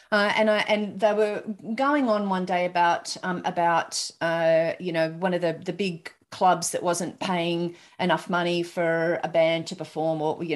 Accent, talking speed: Australian, 195 wpm